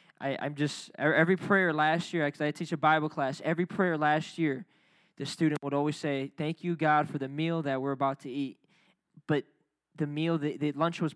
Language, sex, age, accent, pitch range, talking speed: English, male, 20-39, American, 155-205 Hz, 210 wpm